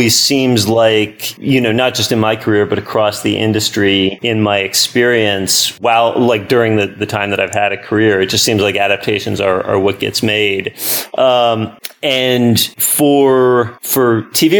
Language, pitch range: English, 105-120 Hz